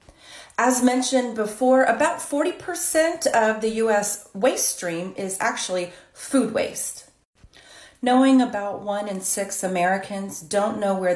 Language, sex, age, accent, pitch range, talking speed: English, female, 40-59, American, 185-240 Hz, 125 wpm